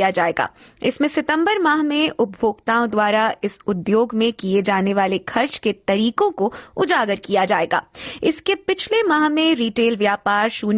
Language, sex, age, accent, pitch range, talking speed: Hindi, female, 20-39, native, 205-270 Hz, 145 wpm